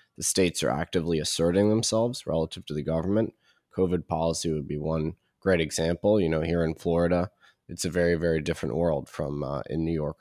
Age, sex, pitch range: 20-39, male, 80-90 Hz